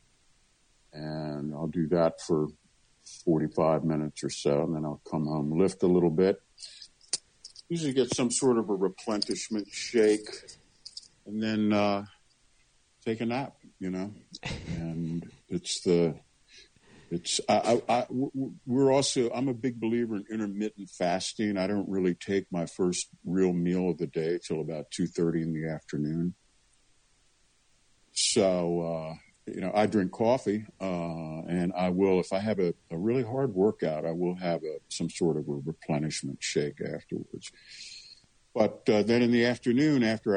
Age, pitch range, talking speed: 60-79, 80-105 Hz, 155 wpm